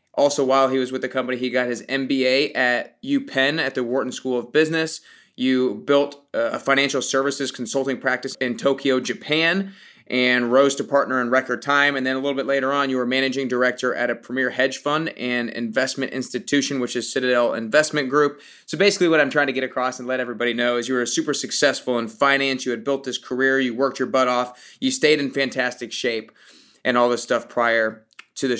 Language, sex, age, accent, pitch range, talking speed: English, male, 20-39, American, 125-140 Hz, 210 wpm